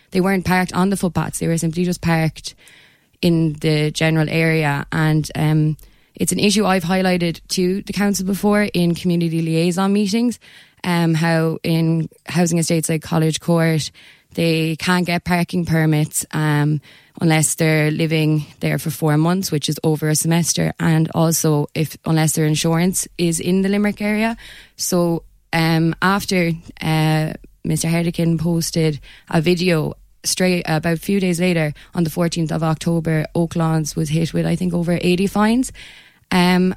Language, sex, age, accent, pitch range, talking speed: English, female, 20-39, Irish, 155-175 Hz, 160 wpm